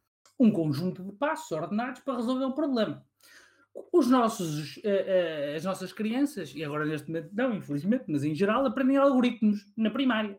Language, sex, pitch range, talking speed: Portuguese, male, 135-220 Hz, 155 wpm